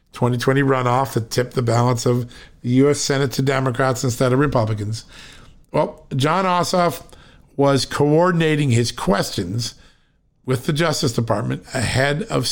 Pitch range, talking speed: 120-155 Hz, 135 wpm